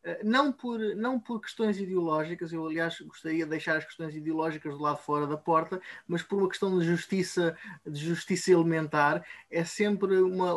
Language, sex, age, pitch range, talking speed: Portuguese, male, 20-39, 160-195 Hz, 165 wpm